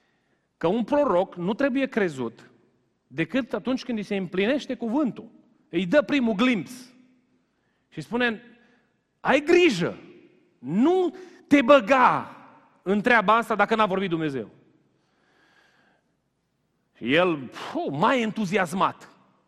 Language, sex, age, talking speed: Romanian, male, 40-59, 105 wpm